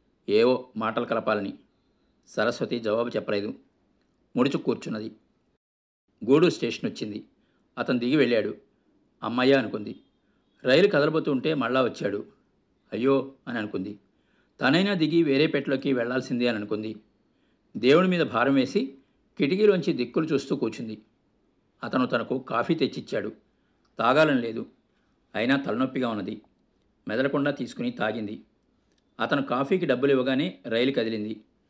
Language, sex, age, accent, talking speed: Telugu, male, 50-69, native, 105 wpm